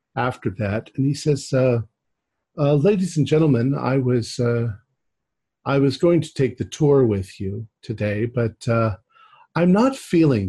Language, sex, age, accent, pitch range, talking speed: English, male, 50-69, American, 105-130 Hz, 160 wpm